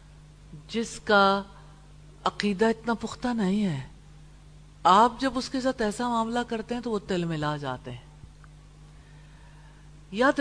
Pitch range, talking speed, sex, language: 150-250 Hz, 140 wpm, female, English